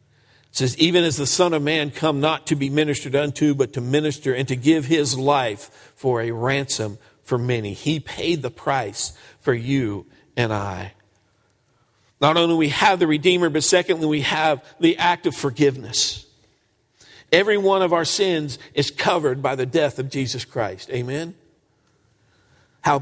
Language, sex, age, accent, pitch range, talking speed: English, male, 50-69, American, 135-175 Hz, 170 wpm